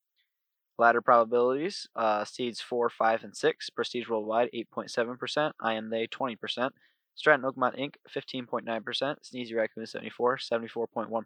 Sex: male